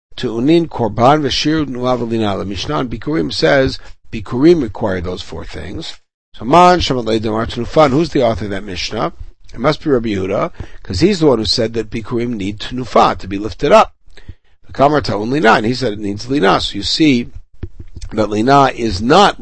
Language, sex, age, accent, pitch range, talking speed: English, male, 60-79, American, 110-145 Hz, 175 wpm